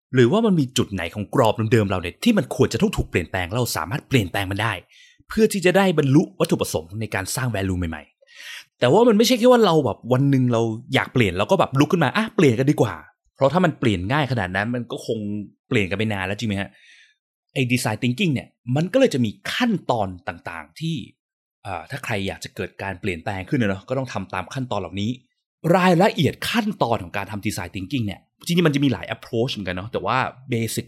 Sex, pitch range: male, 100-140 Hz